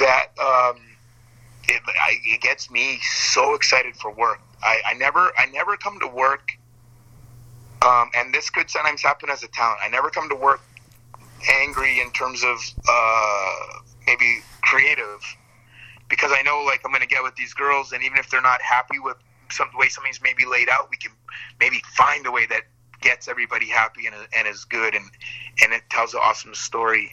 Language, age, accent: English, 30-49, American